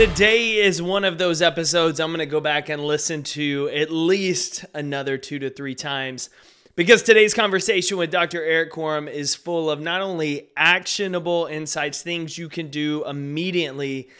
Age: 30-49